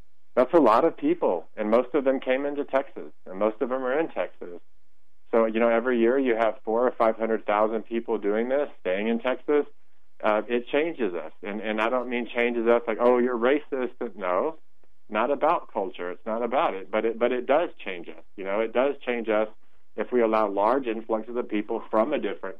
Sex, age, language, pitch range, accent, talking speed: male, 40-59, English, 105-125 Hz, American, 220 wpm